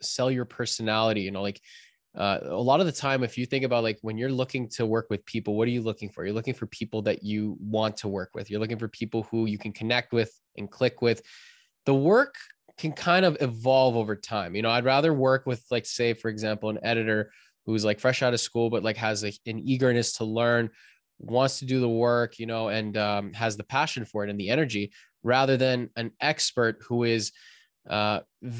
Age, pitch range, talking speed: 20-39, 105-120 Hz, 225 wpm